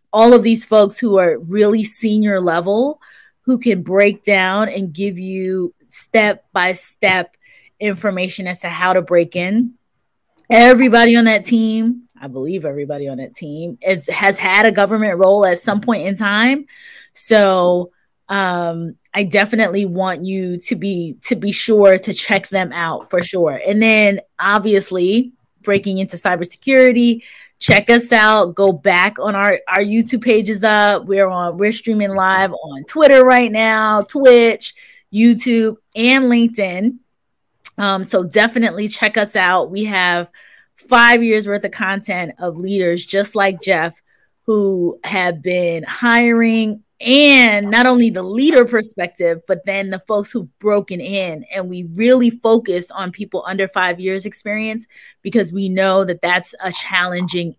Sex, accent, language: female, American, English